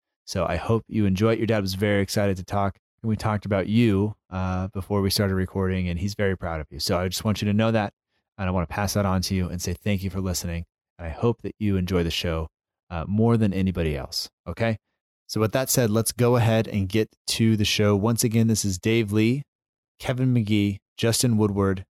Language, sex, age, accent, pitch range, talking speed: English, male, 30-49, American, 90-110 Hz, 240 wpm